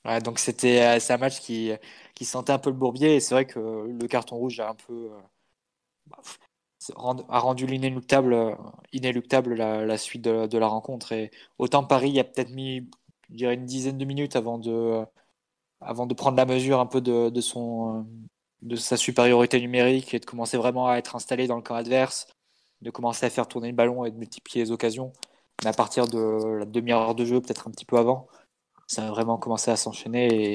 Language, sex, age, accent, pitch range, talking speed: French, male, 20-39, French, 115-125 Hz, 210 wpm